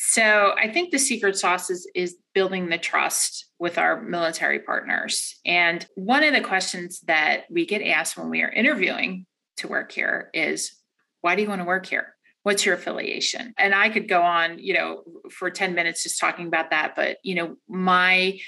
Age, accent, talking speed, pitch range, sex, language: 30-49, American, 195 wpm, 170-210 Hz, female, English